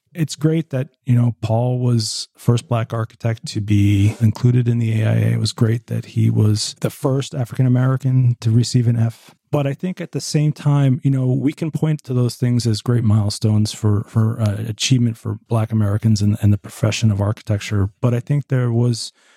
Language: English